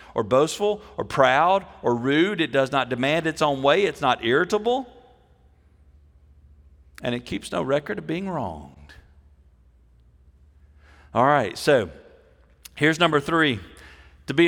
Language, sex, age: English, male, 50-69